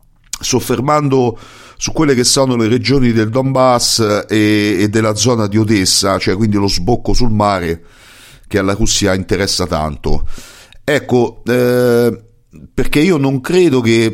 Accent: native